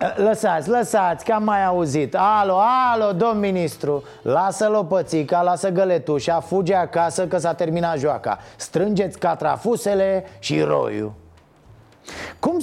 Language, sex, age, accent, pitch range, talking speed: Romanian, male, 30-49, native, 155-205 Hz, 120 wpm